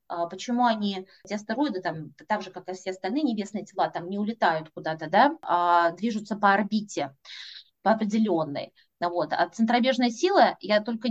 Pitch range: 200-275 Hz